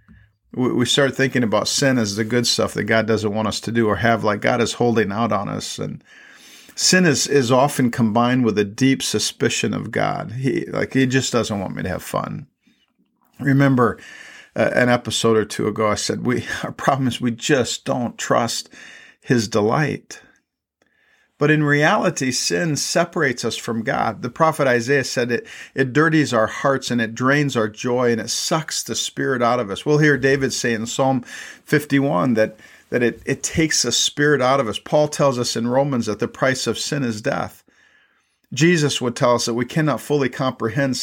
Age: 50-69